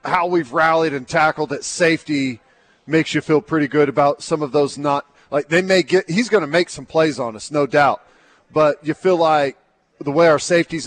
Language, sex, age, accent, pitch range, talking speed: English, male, 40-59, American, 150-175 Hz, 215 wpm